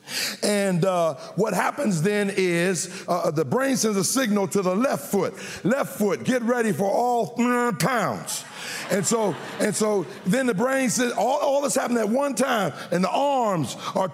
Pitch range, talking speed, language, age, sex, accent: 200-265 Hz, 180 wpm, English, 50-69, male, American